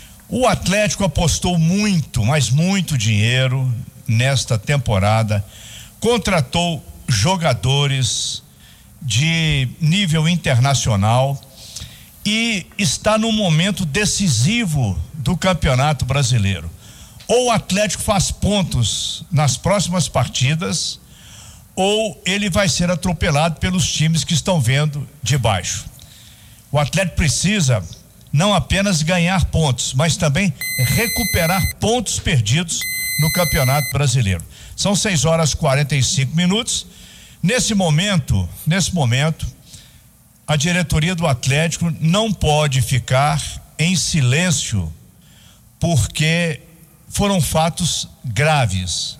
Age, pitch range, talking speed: 60-79, 130-175 Hz, 100 wpm